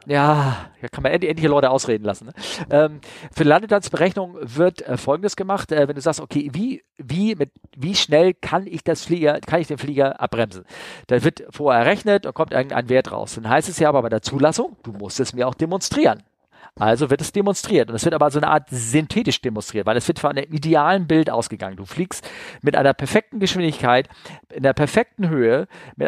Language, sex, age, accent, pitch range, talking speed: German, male, 50-69, German, 140-180 Hz, 200 wpm